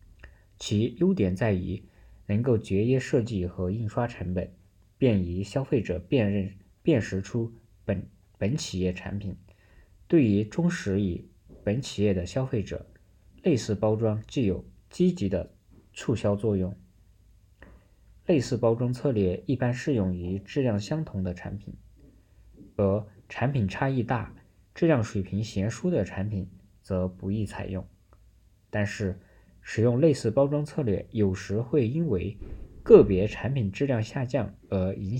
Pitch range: 95-115 Hz